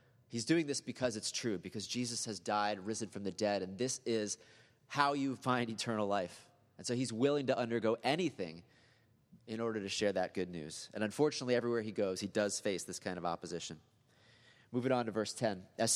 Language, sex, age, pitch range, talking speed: English, male, 30-49, 105-125 Hz, 205 wpm